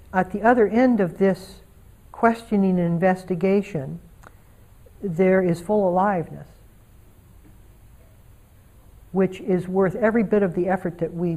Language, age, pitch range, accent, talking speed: English, 60-79, 140-205 Hz, American, 120 wpm